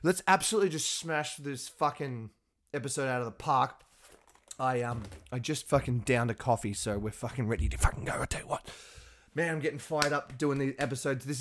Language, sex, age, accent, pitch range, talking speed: English, male, 20-39, Australian, 125-165 Hz, 205 wpm